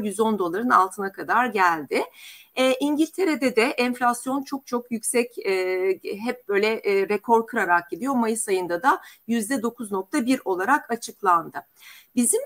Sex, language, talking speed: female, Turkish, 140 wpm